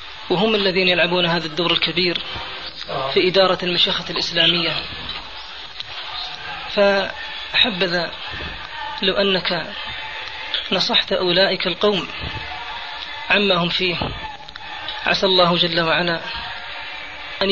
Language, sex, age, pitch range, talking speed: Arabic, female, 30-49, 175-200 Hz, 80 wpm